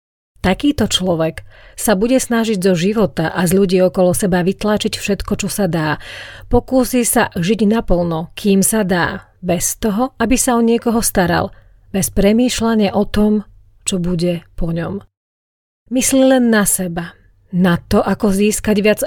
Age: 40-59